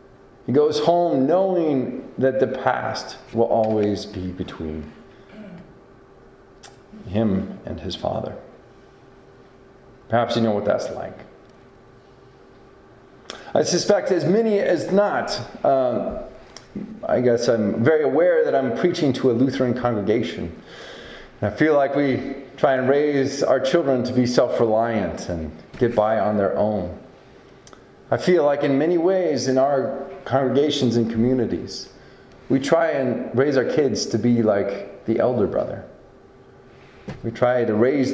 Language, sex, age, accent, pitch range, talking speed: English, male, 40-59, American, 115-145 Hz, 135 wpm